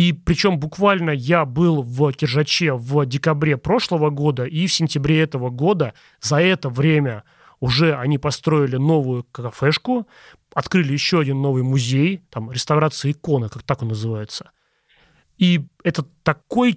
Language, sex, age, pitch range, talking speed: Russian, male, 30-49, 135-170 Hz, 140 wpm